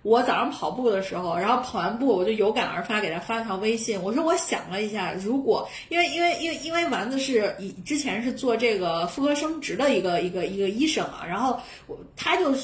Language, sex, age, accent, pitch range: Chinese, female, 30-49, native, 200-270 Hz